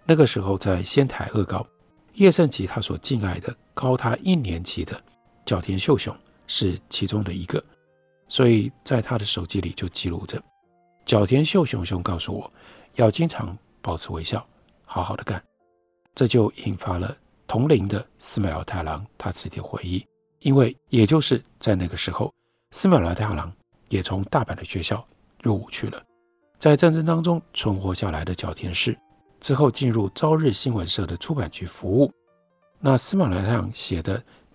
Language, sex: Chinese, male